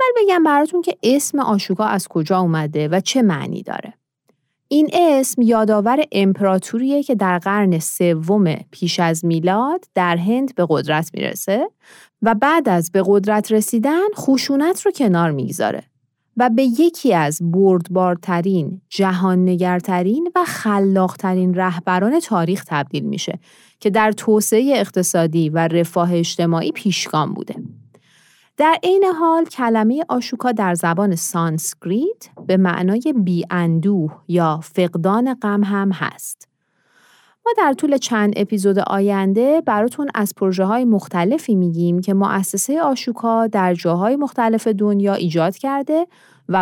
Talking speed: 125 wpm